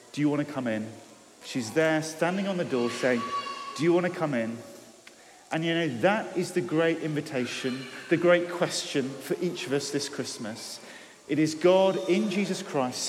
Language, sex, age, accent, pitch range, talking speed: English, male, 40-59, British, 125-175 Hz, 195 wpm